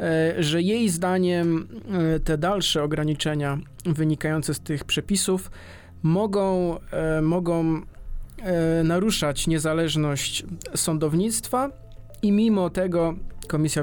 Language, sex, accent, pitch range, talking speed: Polish, male, native, 150-180 Hz, 80 wpm